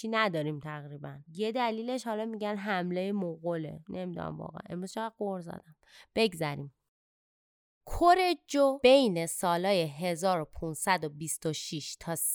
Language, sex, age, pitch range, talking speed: Persian, female, 20-39, 165-225 Hz, 85 wpm